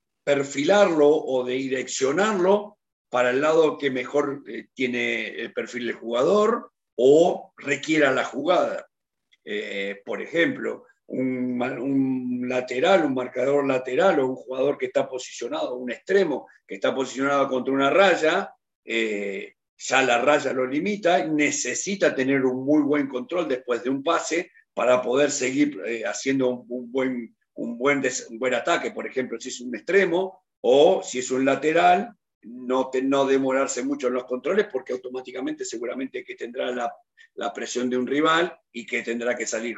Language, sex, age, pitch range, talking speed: Spanish, male, 50-69, 125-185 Hz, 160 wpm